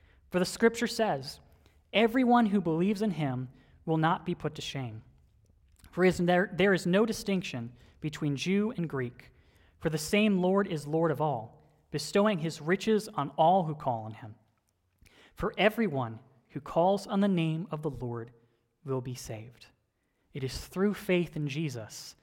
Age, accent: 30-49, American